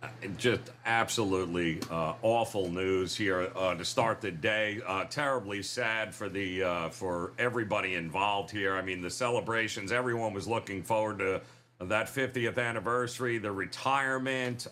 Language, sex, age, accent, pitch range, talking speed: English, male, 50-69, American, 110-140 Hz, 145 wpm